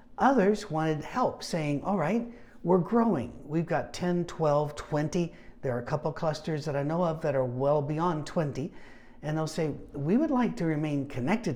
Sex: male